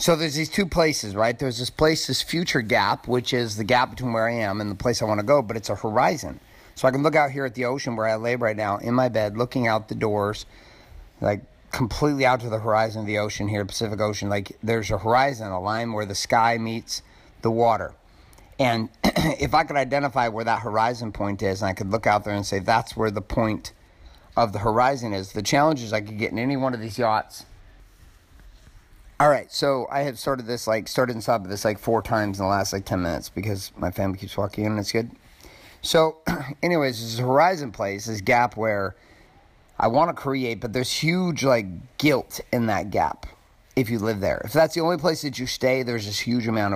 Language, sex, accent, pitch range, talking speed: English, male, American, 105-130 Hz, 235 wpm